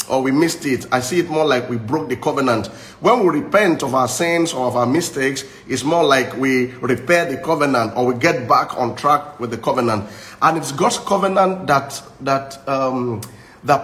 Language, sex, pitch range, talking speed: English, male, 135-185 Hz, 205 wpm